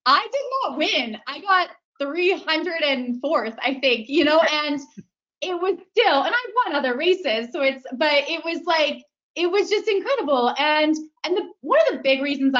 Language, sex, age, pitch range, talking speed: English, female, 20-39, 250-310 Hz, 180 wpm